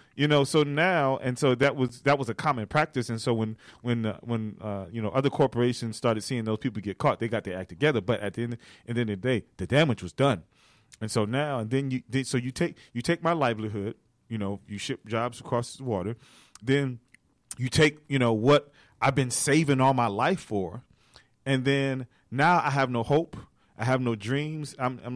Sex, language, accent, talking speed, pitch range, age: male, English, American, 225 wpm, 115-145 Hz, 30-49